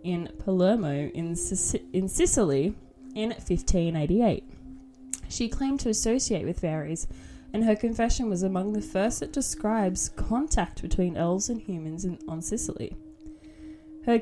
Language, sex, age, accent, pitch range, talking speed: English, female, 10-29, Australian, 180-250 Hz, 135 wpm